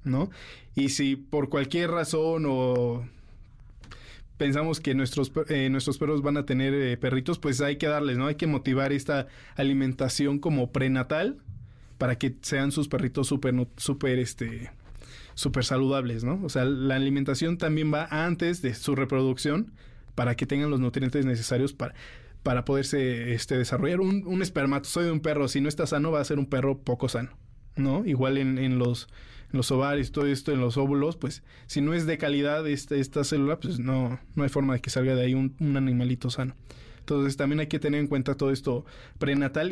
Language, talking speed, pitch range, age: Spanish, 185 wpm, 125-145 Hz, 20-39